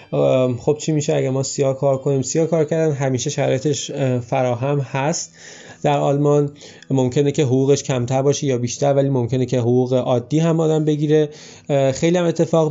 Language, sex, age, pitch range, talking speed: Persian, male, 30-49, 130-150 Hz, 165 wpm